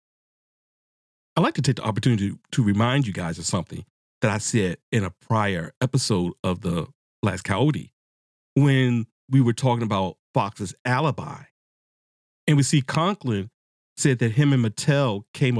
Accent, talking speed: American, 160 wpm